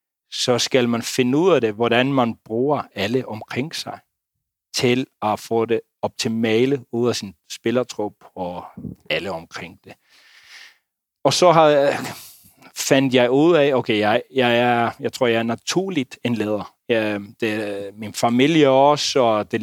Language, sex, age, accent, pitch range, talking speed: Danish, male, 30-49, native, 115-135 Hz, 160 wpm